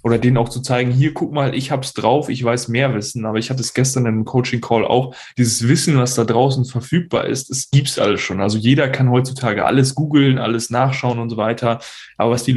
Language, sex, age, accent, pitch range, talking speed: German, male, 10-29, German, 120-140 Hz, 245 wpm